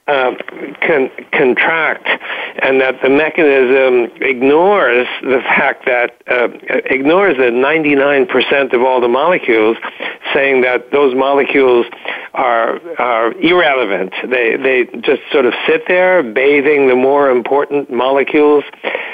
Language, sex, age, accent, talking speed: English, male, 60-79, American, 120 wpm